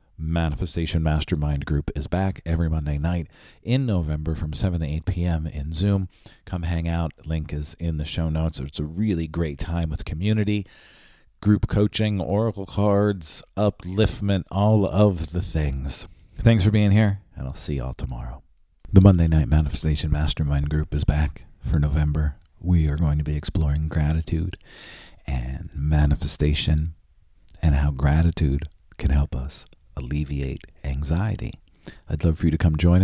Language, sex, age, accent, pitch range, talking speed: English, male, 40-59, American, 75-90 Hz, 155 wpm